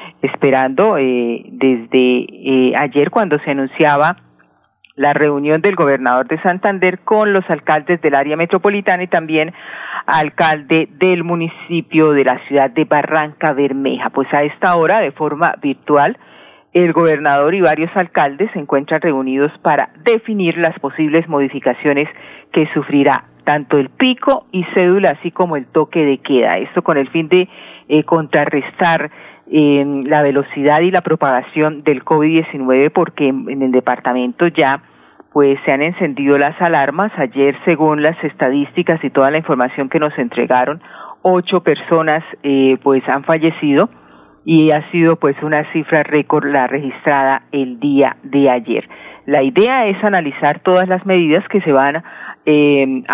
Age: 40-59